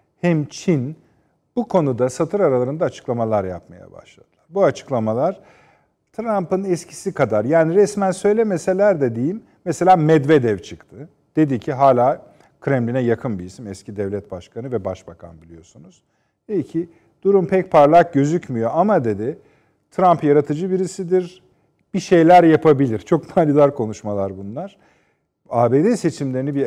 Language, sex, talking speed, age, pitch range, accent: Turkish, male, 125 wpm, 50-69, 110-165 Hz, native